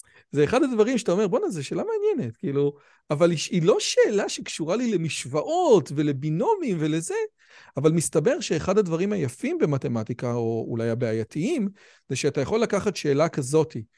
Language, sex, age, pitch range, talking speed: Hebrew, male, 40-59, 140-200 Hz, 150 wpm